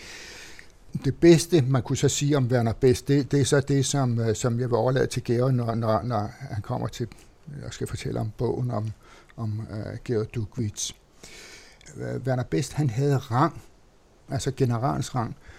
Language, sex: Danish, male